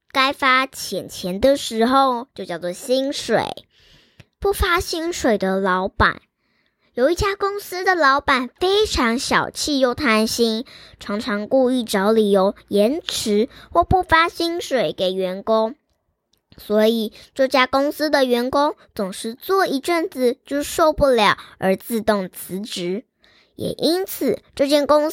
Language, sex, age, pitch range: Chinese, male, 10-29, 215-315 Hz